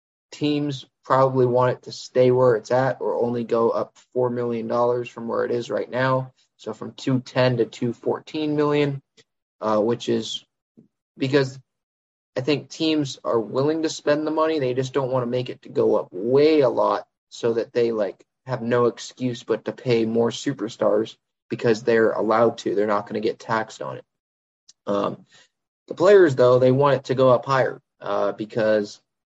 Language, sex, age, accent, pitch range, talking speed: English, male, 20-39, American, 110-130 Hz, 185 wpm